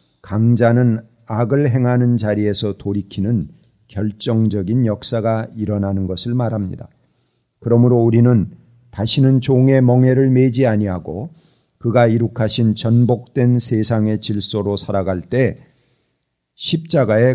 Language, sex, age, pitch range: Korean, male, 40-59, 105-130 Hz